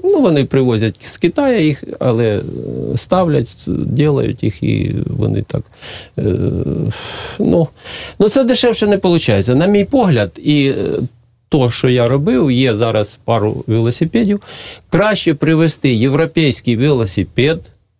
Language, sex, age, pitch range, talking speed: Ukrainian, male, 40-59, 120-170 Hz, 115 wpm